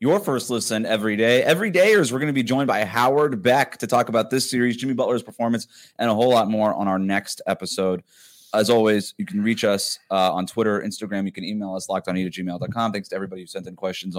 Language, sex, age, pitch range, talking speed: English, male, 20-39, 90-135 Hz, 235 wpm